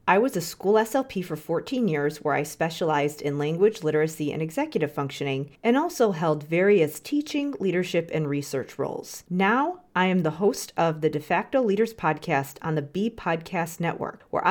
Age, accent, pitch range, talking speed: 40-59, American, 155-210 Hz, 175 wpm